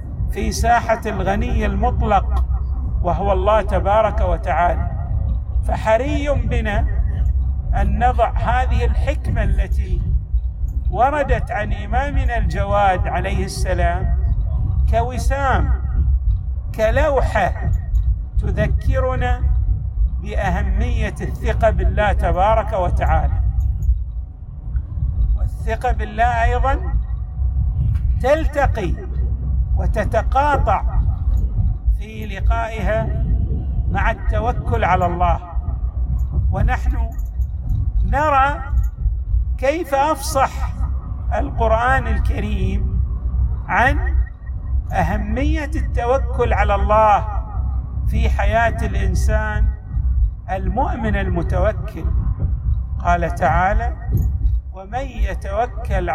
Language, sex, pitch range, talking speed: Arabic, male, 65-90 Hz, 65 wpm